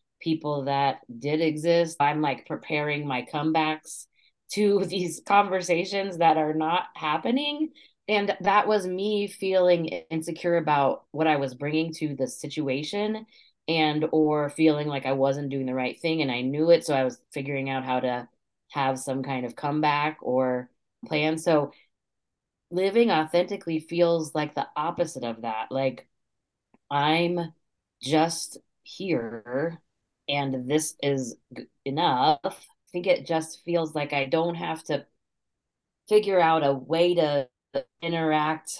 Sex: female